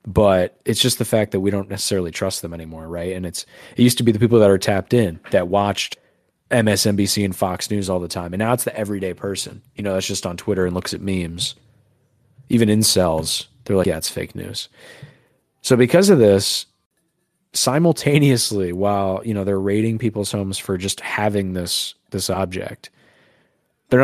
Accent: American